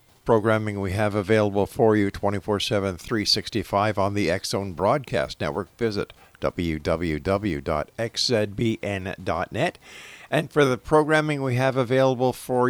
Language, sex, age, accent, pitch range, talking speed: English, male, 50-69, American, 95-120 Hz, 110 wpm